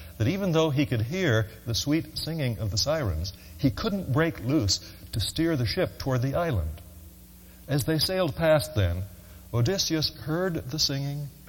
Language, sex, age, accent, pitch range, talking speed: English, male, 60-79, American, 95-135 Hz, 165 wpm